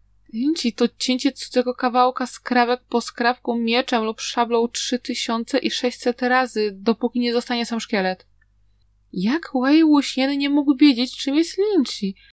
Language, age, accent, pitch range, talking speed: Polish, 20-39, native, 205-300 Hz, 130 wpm